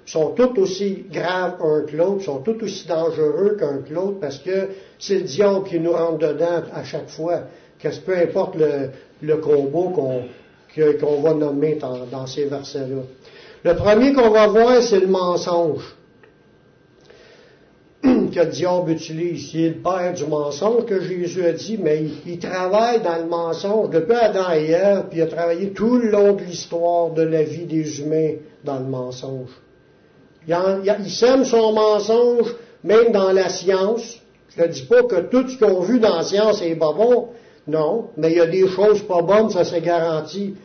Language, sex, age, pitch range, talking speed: French, male, 60-79, 155-200 Hz, 195 wpm